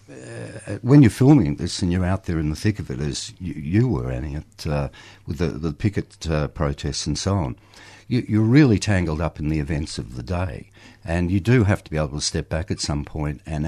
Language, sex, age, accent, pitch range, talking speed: English, male, 60-79, Australian, 75-105 Hz, 235 wpm